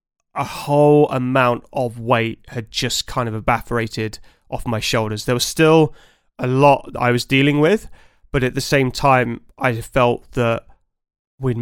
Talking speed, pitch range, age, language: 160 wpm, 115-130 Hz, 20-39, English